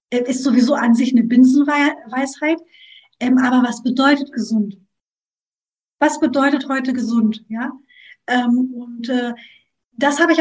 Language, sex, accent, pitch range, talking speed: German, female, German, 240-285 Hz, 125 wpm